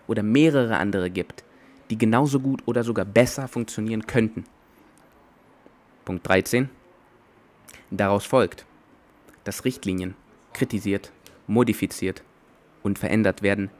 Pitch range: 95-120 Hz